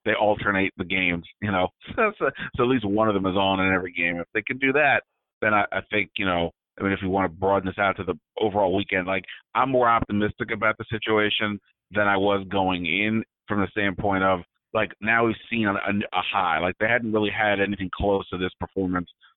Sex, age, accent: male, 30-49, American